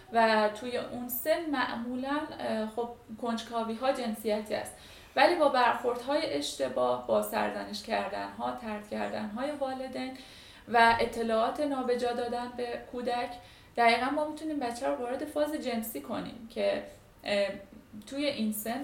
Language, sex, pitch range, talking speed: Persian, female, 215-275 Hz, 120 wpm